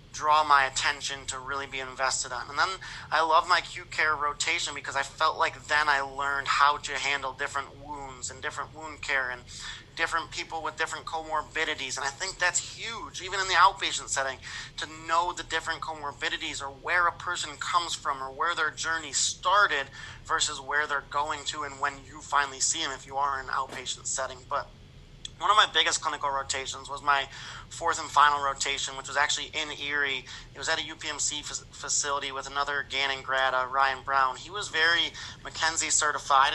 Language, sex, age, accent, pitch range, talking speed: English, male, 30-49, American, 135-160 Hz, 195 wpm